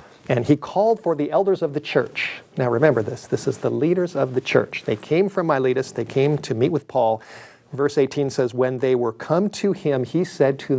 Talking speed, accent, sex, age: 230 wpm, American, male, 50-69